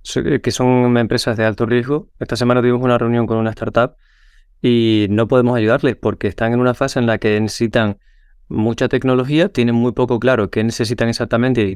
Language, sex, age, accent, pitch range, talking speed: Spanish, male, 20-39, Spanish, 110-130 Hz, 190 wpm